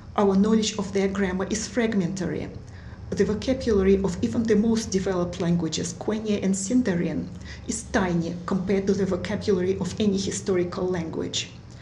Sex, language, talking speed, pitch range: female, English, 140 wpm, 180-215 Hz